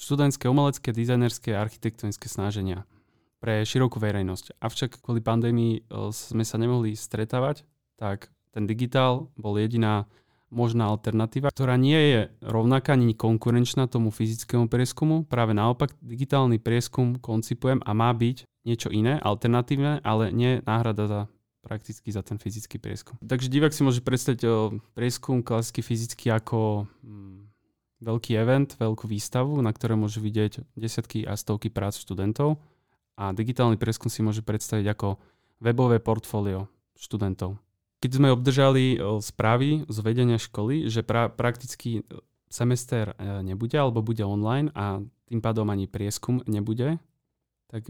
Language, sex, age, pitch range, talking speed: Slovak, male, 20-39, 110-125 Hz, 135 wpm